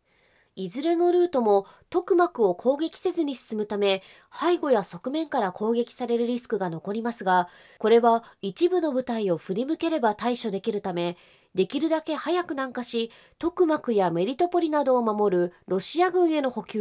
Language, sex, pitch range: Japanese, female, 200-305 Hz